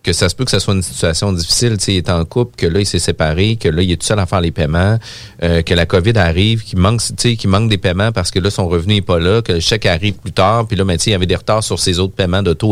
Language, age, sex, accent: French, 40-59, male, Canadian